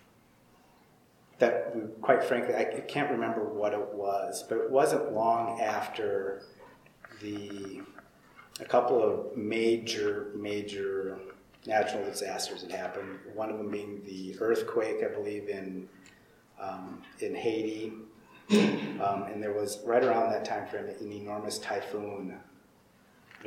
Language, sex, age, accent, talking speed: English, male, 30-49, American, 125 wpm